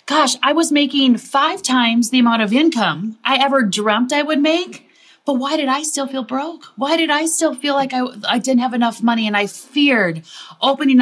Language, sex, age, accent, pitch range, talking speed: English, female, 30-49, American, 220-275 Hz, 210 wpm